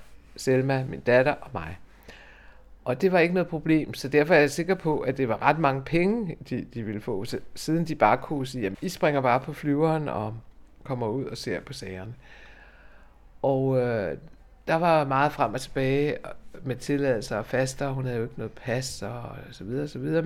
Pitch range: 110-140 Hz